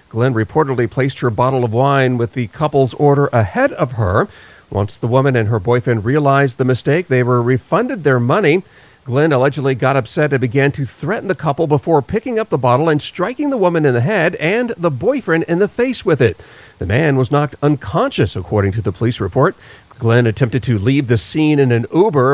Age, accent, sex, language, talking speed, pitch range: 40-59, American, male, English, 205 wpm, 125-160 Hz